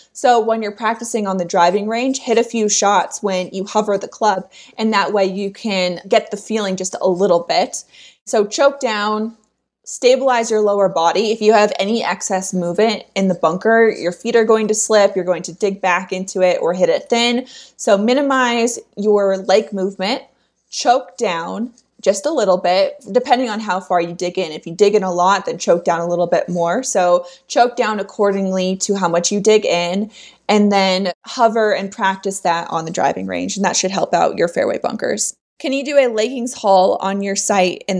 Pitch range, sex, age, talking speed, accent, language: 180-230 Hz, female, 20-39, 205 wpm, American, English